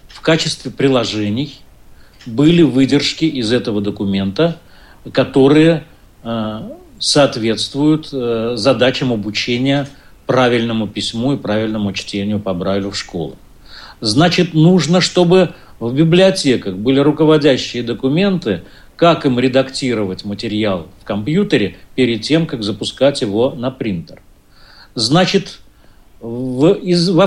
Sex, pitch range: male, 115-155 Hz